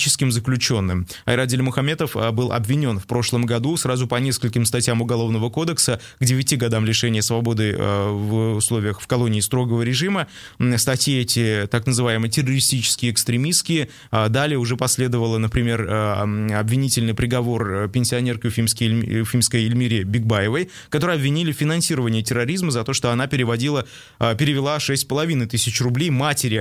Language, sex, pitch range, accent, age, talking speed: Russian, male, 115-135 Hz, native, 20-39, 125 wpm